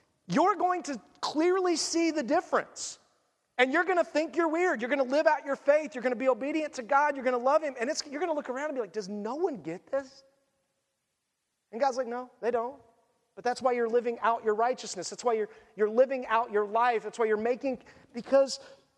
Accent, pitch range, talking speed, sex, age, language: American, 235-295 Hz, 235 wpm, male, 40-59, English